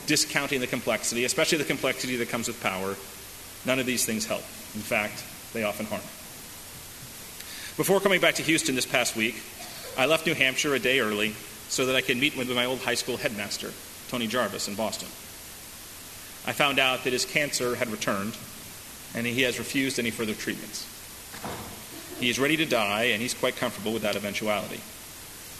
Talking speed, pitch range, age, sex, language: 180 wpm, 110-135 Hz, 30-49, male, English